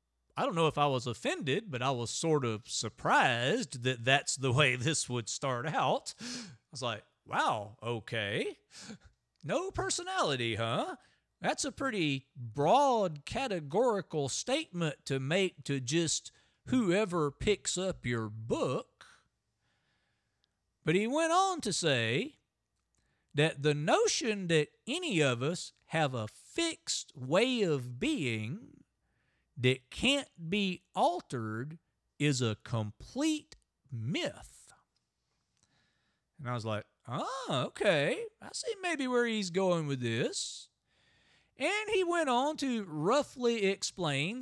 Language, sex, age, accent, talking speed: English, male, 40-59, American, 125 wpm